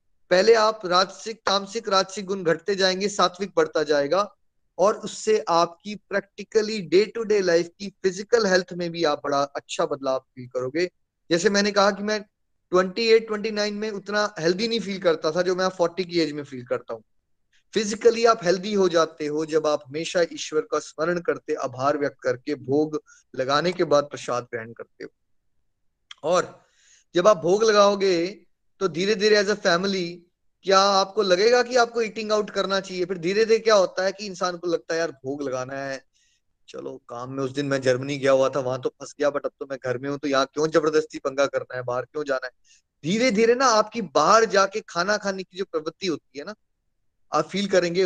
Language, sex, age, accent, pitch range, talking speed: Hindi, male, 20-39, native, 150-205 Hz, 200 wpm